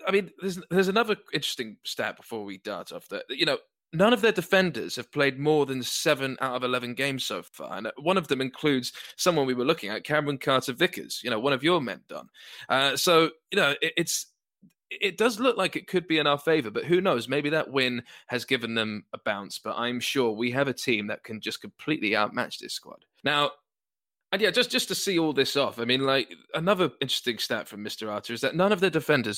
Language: English